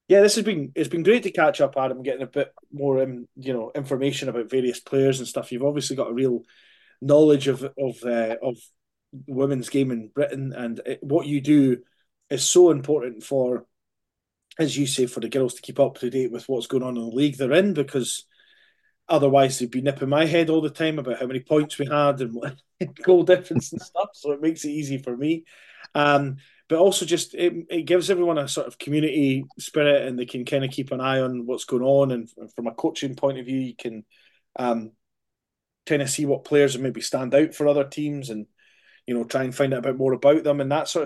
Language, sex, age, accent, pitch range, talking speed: English, male, 20-39, British, 125-145 Hz, 230 wpm